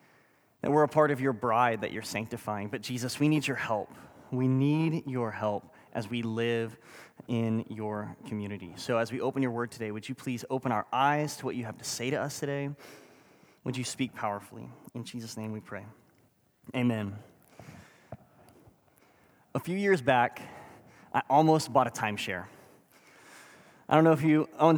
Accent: American